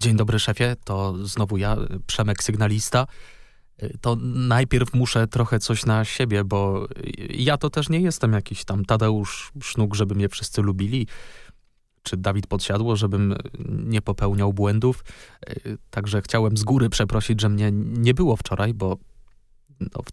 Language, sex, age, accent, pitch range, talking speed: Polish, male, 20-39, native, 105-125 Hz, 145 wpm